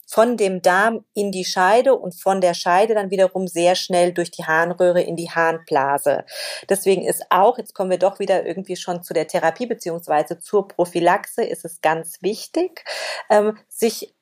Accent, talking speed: German, 175 wpm